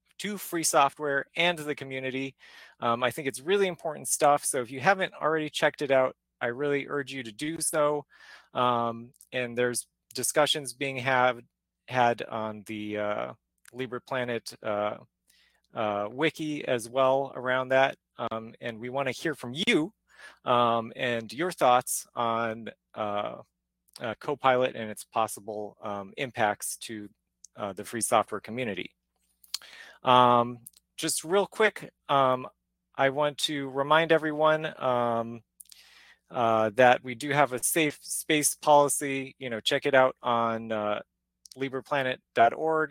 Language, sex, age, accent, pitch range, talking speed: English, male, 30-49, American, 110-145 Hz, 145 wpm